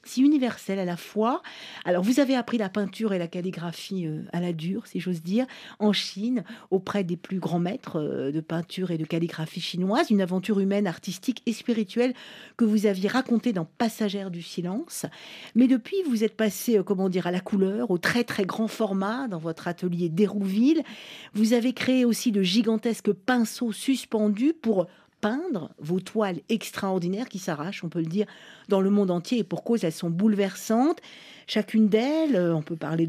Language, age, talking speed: French, 50-69, 180 wpm